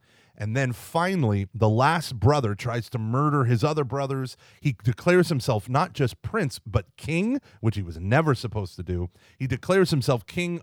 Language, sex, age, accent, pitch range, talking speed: English, male, 30-49, American, 105-140 Hz, 175 wpm